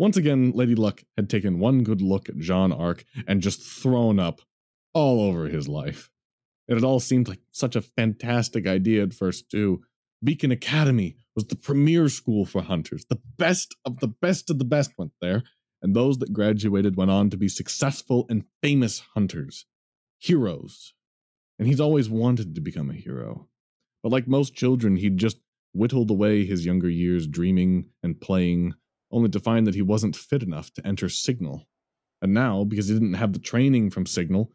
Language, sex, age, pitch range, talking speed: English, male, 30-49, 100-135 Hz, 185 wpm